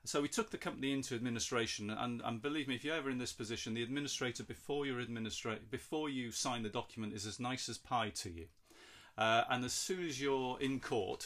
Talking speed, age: 220 wpm, 40-59